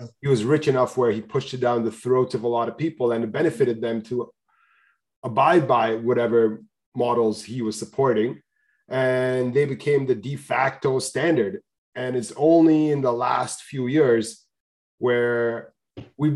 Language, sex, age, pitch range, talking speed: English, male, 30-49, 115-145 Hz, 165 wpm